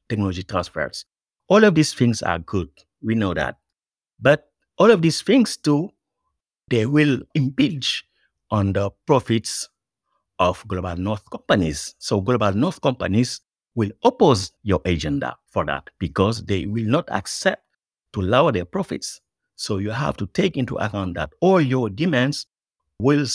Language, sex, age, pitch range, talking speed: English, male, 50-69, 105-145 Hz, 150 wpm